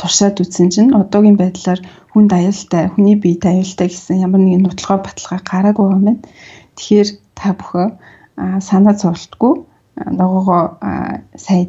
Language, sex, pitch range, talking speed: English, female, 180-205 Hz, 135 wpm